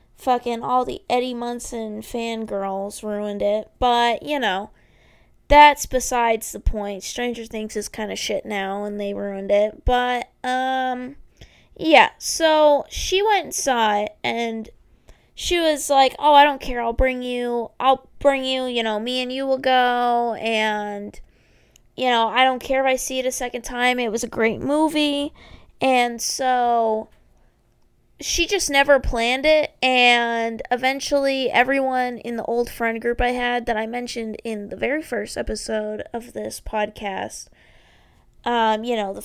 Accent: American